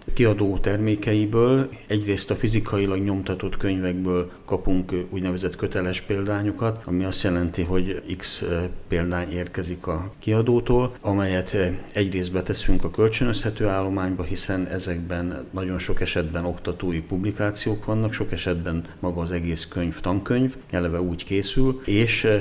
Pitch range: 90-105 Hz